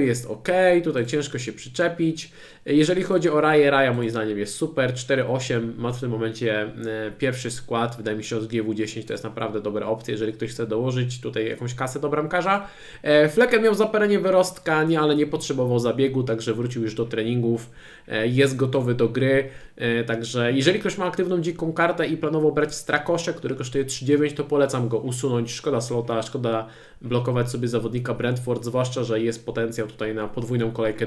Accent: native